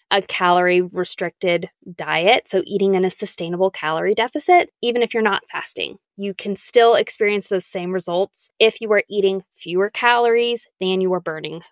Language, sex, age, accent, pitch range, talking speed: English, female, 20-39, American, 190-245 Hz, 165 wpm